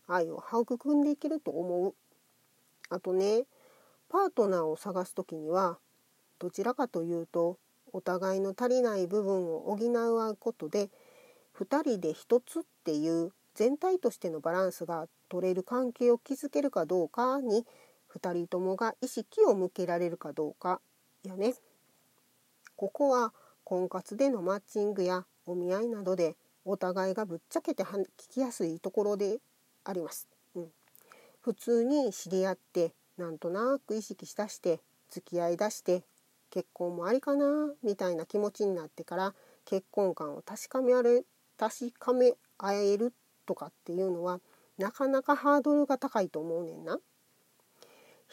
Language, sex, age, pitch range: Japanese, female, 40-59, 180-250 Hz